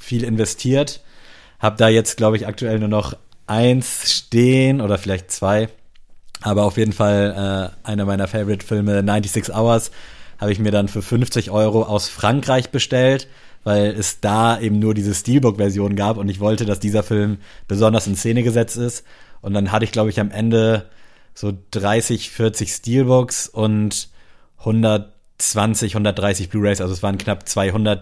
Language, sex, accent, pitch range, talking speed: German, male, German, 100-115 Hz, 160 wpm